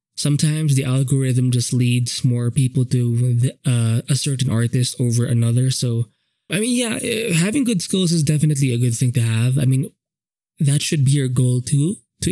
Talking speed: 180 wpm